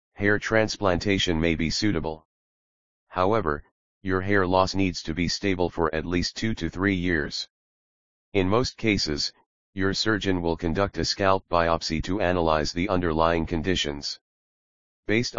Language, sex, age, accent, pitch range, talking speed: English, male, 30-49, American, 80-100 Hz, 140 wpm